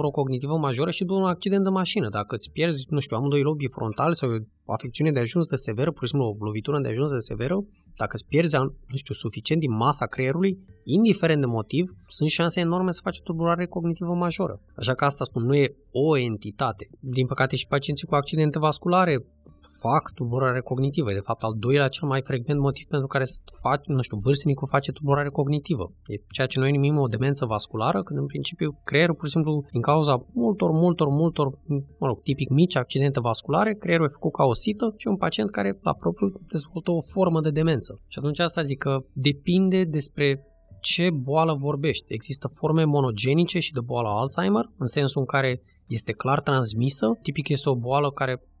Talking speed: 200 wpm